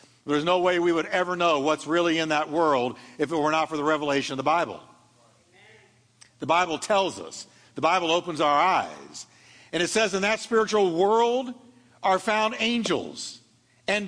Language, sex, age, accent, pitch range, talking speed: English, male, 50-69, American, 155-215 Hz, 180 wpm